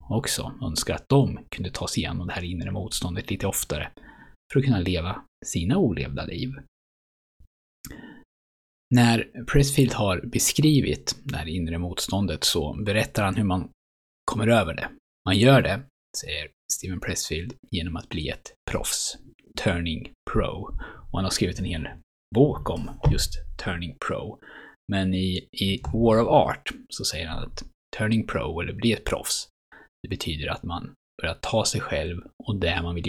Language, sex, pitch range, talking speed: Swedish, male, 85-115 Hz, 160 wpm